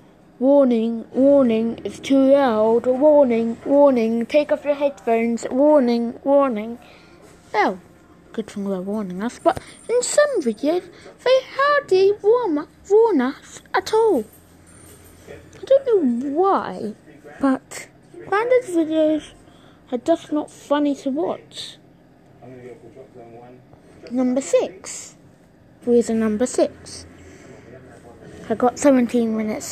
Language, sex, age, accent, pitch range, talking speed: English, female, 20-39, British, 225-335 Hz, 105 wpm